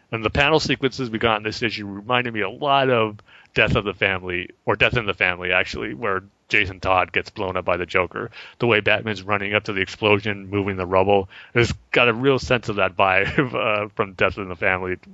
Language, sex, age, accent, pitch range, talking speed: English, male, 30-49, American, 95-115 Hz, 230 wpm